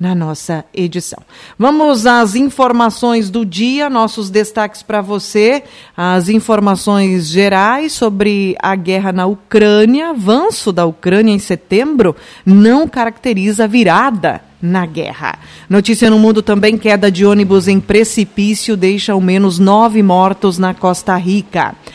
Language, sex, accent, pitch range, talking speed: Portuguese, female, Brazilian, 190-240 Hz, 130 wpm